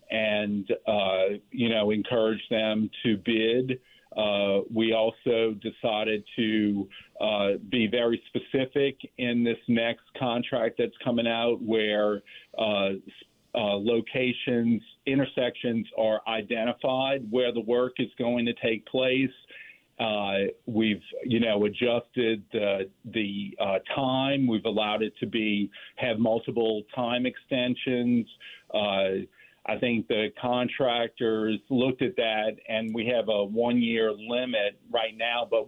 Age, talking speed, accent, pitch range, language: 50-69, 125 wpm, American, 110-120 Hz, English